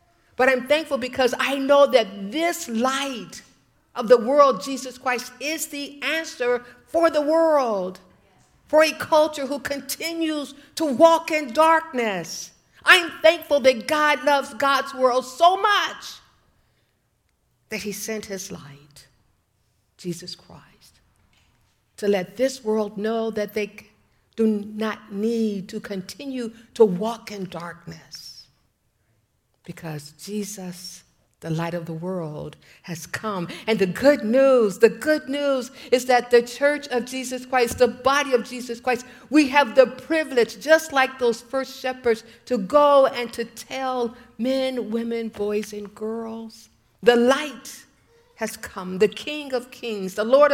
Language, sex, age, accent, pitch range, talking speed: English, female, 50-69, American, 190-270 Hz, 140 wpm